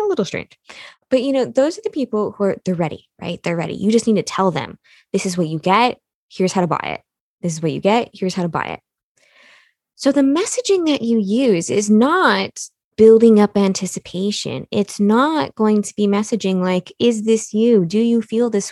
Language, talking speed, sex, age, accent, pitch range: English, 220 wpm, female, 20-39, American, 180-235 Hz